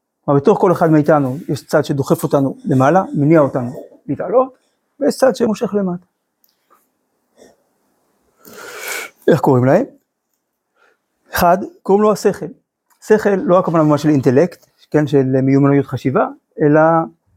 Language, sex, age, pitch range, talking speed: Hebrew, male, 50-69, 140-190 Hz, 120 wpm